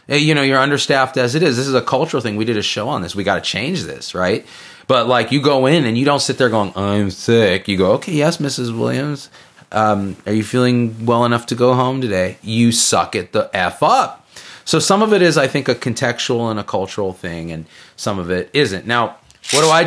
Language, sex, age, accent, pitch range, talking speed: English, male, 30-49, American, 105-135 Hz, 245 wpm